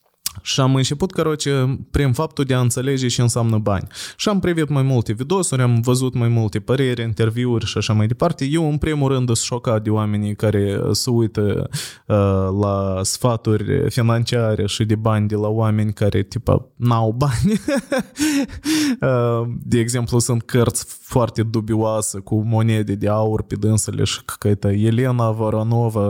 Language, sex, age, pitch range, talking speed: Romanian, male, 20-39, 110-155 Hz, 165 wpm